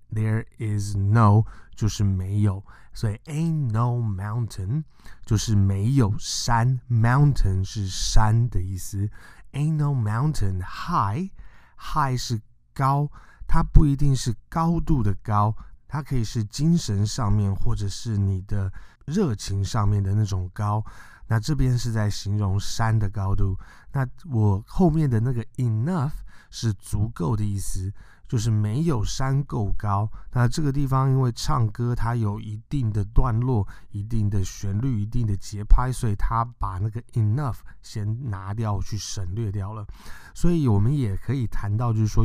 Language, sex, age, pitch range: Chinese, male, 20-39, 100-125 Hz